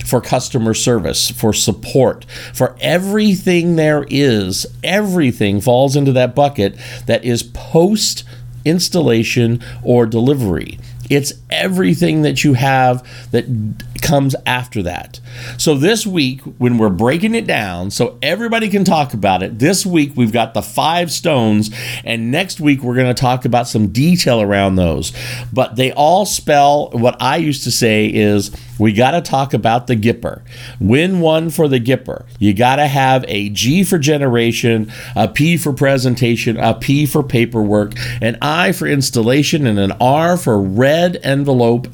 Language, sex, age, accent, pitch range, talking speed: English, male, 50-69, American, 115-145 Hz, 155 wpm